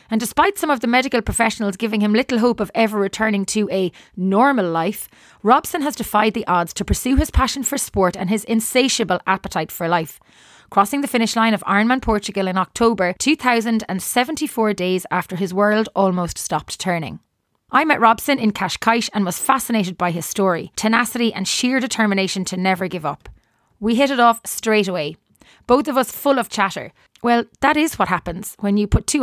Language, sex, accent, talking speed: English, female, Irish, 190 wpm